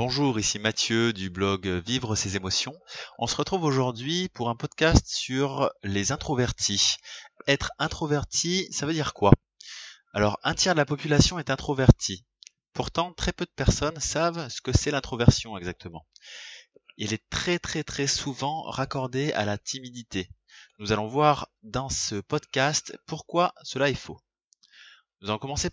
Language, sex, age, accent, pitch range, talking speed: French, male, 30-49, French, 105-145 Hz, 155 wpm